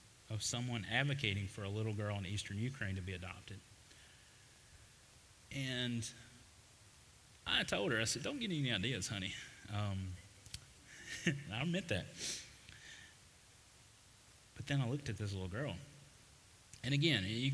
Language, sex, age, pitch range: English, male, 30-49, 100-125 Hz